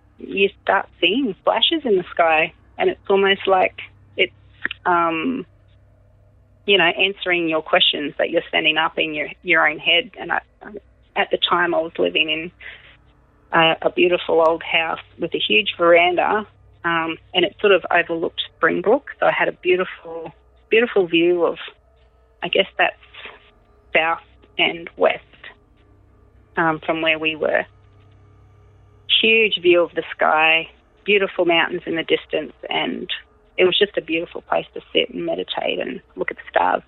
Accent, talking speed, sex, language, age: Australian, 155 wpm, female, English, 30-49